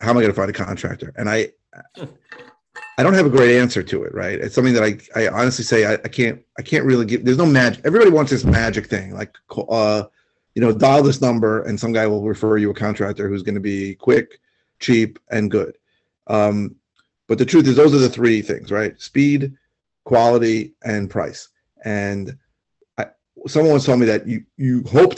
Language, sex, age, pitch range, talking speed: English, male, 30-49, 110-130 Hz, 210 wpm